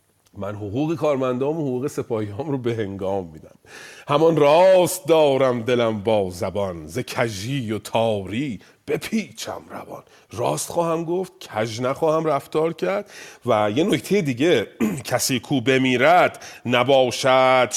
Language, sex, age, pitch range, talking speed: Persian, male, 40-59, 115-165 Hz, 120 wpm